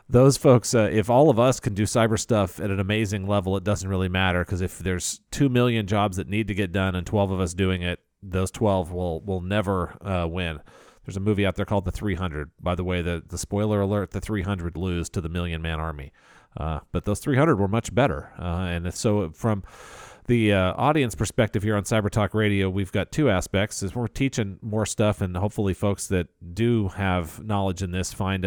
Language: English